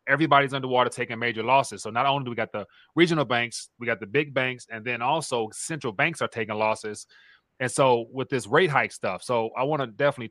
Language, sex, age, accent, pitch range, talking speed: English, male, 30-49, American, 115-135 Hz, 225 wpm